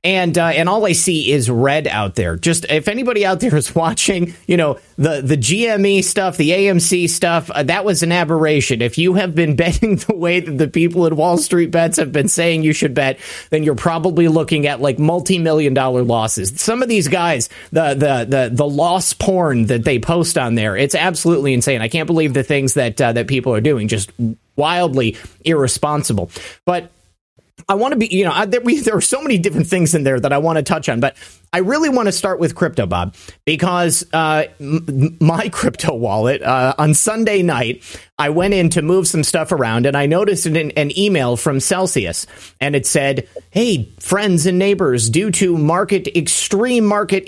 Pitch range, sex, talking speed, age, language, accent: 135-185 Hz, male, 205 wpm, 30-49, English, American